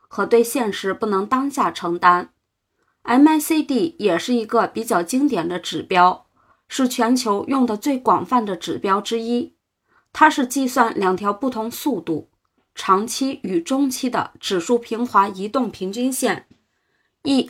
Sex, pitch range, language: female, 205-270 Hz, Chinese